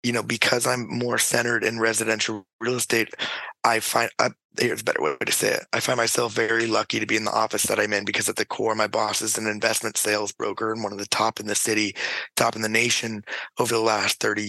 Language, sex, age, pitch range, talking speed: English, male, 20-39, 110-120 Hz, 250 wpm